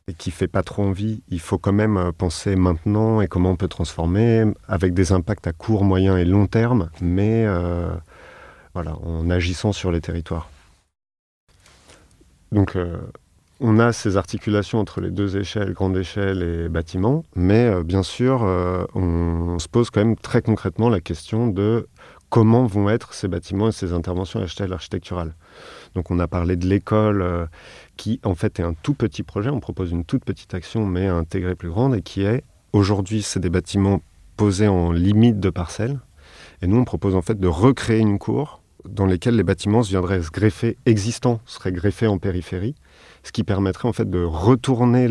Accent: French